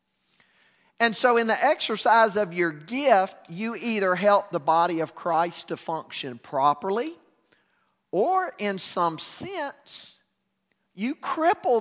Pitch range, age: 165-230 Hz, 40-59